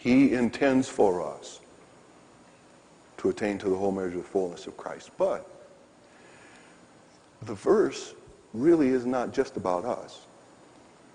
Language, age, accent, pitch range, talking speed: English, 50-69, American, 115-175 Hz, 130 wpm